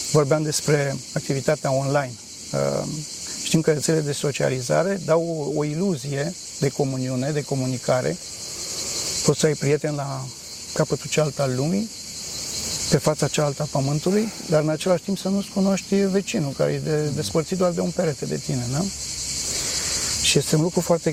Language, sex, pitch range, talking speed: Romanian, male, 140-165 Hz, 160 wpm